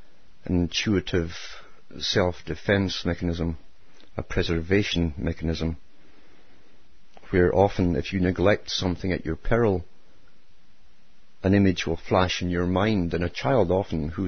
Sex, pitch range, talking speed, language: male, 85-95 Hz, 120 wpm, English